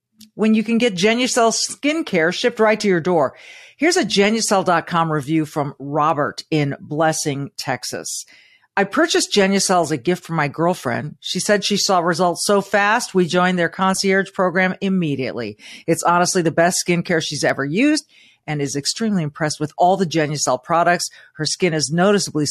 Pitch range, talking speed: 150-205 Hz, 170 wpm